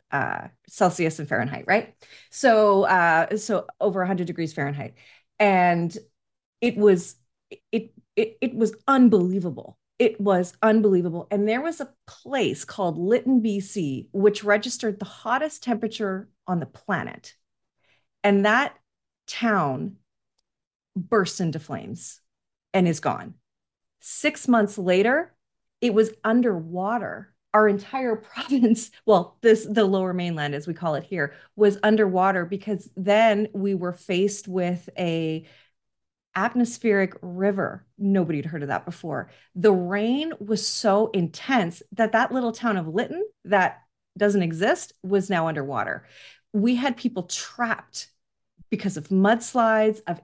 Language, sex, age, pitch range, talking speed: English, female, 30-49, 180-225 Hz, 130 wpm